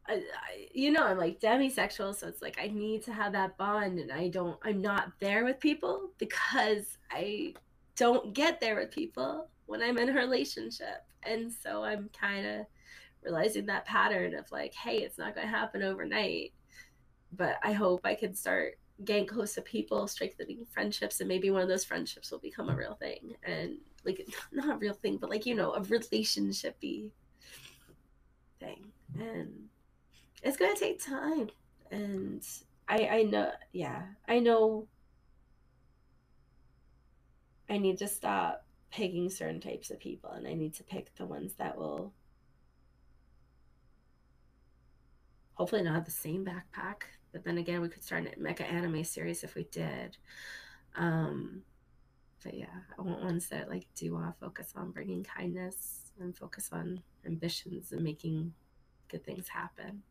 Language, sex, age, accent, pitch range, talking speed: English, female, 20-39, American, 165-220 Hz, 160 wpm